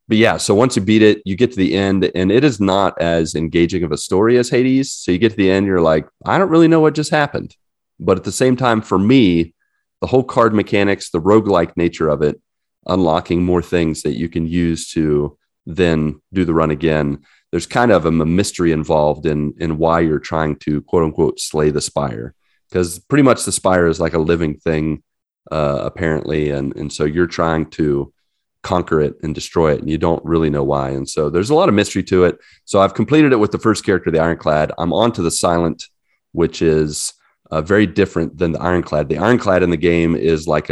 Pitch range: 80-95 Hz